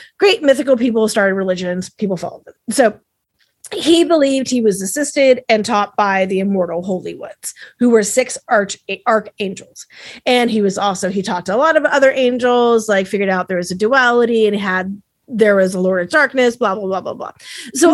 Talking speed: 195 wpm